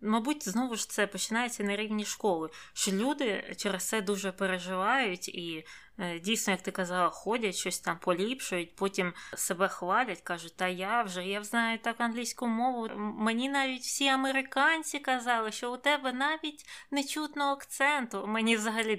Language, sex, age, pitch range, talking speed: Ukrainian, female, 20-39, 190-235 Hz, 155 wpm